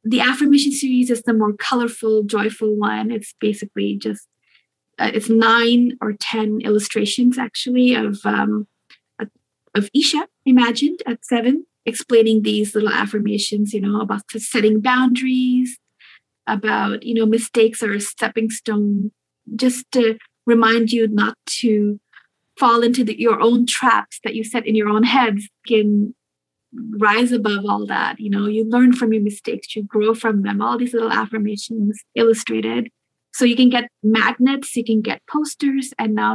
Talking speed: 155 wpm